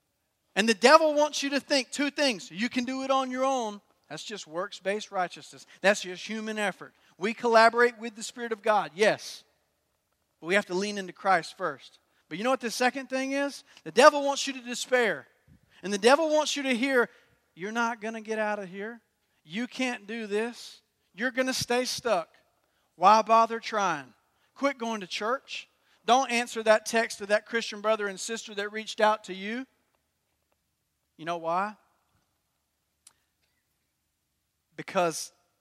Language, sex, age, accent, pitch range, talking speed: English, male, 40-59, American, 170-235 Hz, 175 wpm